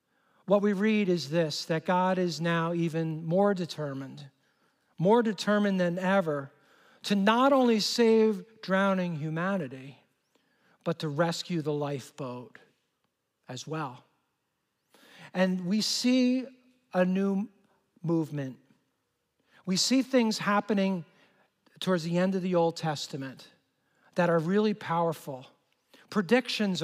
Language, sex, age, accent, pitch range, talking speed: English, male, 50-69, American, 160-215 Hz, 115 wpm